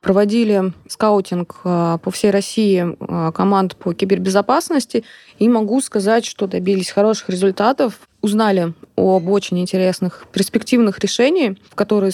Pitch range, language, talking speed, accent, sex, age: 180-220 Hz, Russian, 115 wpm, native, female, 20-39